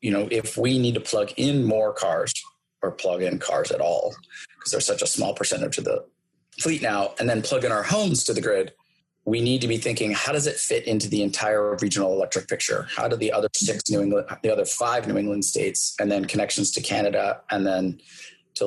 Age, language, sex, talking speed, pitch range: 30-49, English, male, 230 wpm, 105-170 Hz